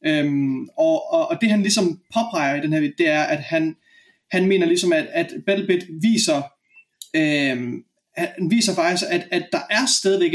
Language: Danish